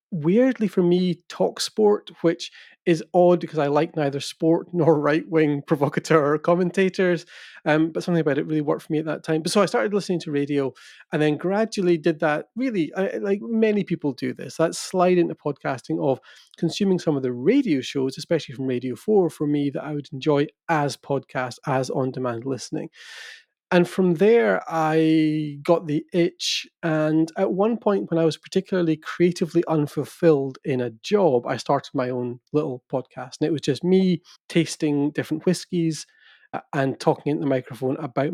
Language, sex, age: English, male, 30-49